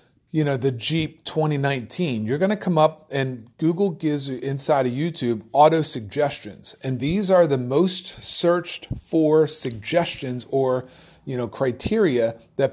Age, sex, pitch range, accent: 40-59, male, 125-170 Hz, American